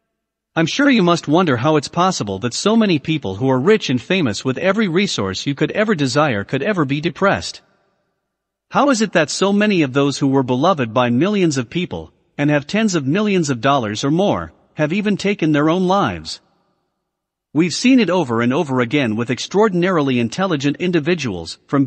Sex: male